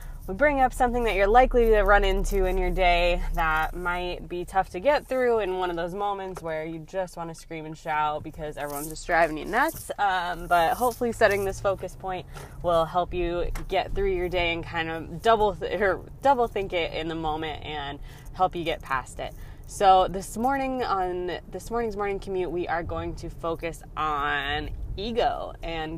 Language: English